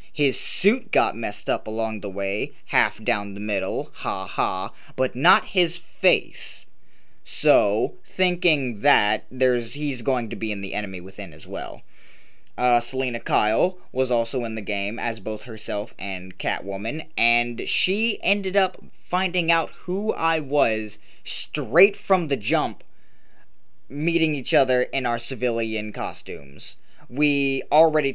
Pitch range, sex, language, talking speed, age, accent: 110-155 Hz, male, English, 145 wpm, 20-39, American